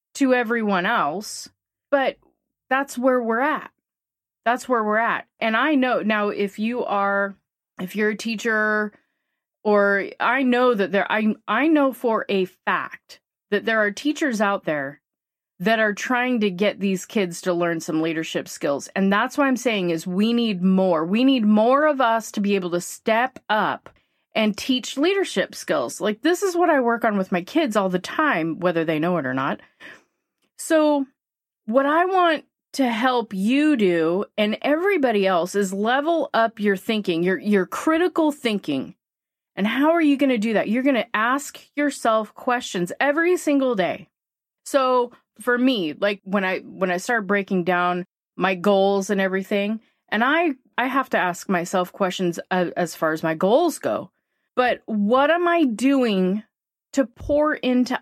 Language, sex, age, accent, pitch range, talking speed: English, female, 30-49, American, 195-265 Hz, 175 wpm